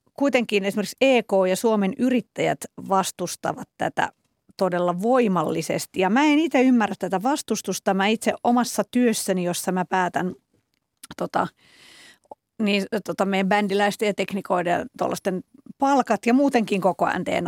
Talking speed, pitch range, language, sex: 120 wpm, 190-240 Hz, Finnish, female